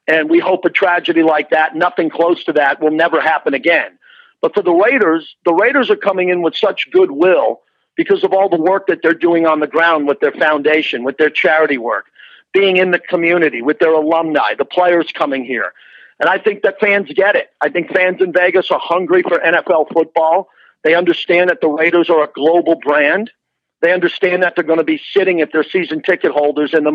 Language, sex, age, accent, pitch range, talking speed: English, male, 50-69, American, 160-195 Hz, 215 wpm